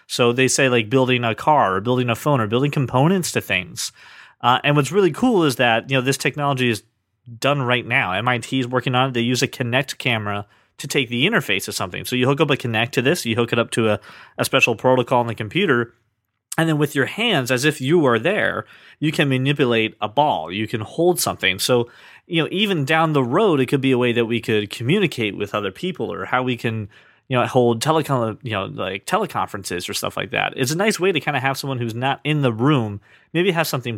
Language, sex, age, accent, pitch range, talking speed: English, male, 30-49, American, 115-145 Hz, 245 wpm